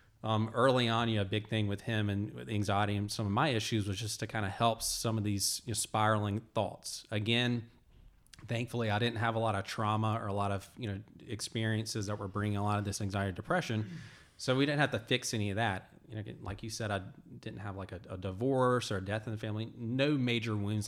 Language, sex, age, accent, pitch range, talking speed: English, male, 20-39, American, 100-115 Hz, 245 wpm